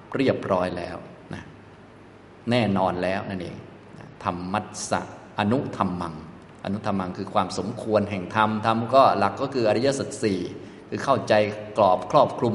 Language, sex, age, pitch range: Thai, male, 20-39, 100-115 Hz